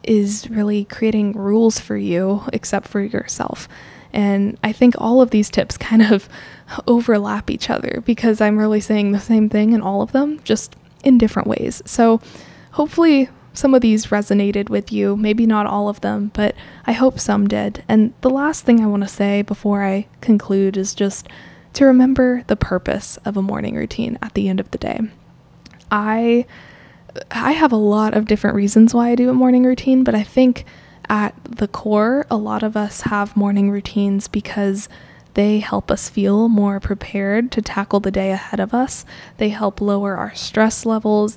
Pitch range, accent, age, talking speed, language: 205-235 Hz, American, 10-29, 185 wpm, English